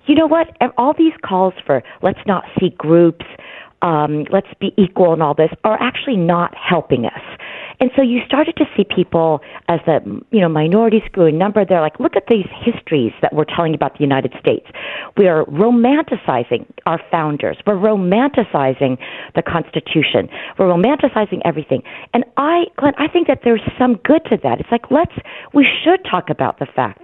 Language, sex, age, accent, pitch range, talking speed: English, female, 50-69, American, 160-245 Hz, 180 wpm